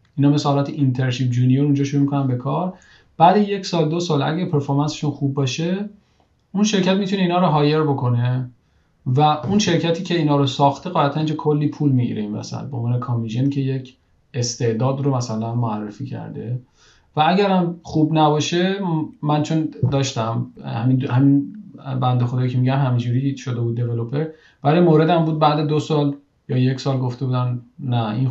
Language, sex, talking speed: Persian, male, 165 wpm